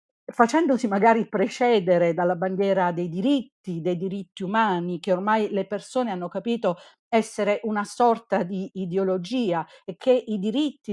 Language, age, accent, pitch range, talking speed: Italian, 50-69, native, 175-225 Hz, 135 wpm